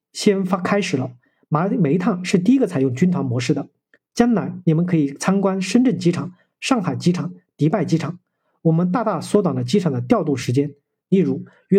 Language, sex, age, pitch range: Chinese, male, 50-69, 155-200 Hz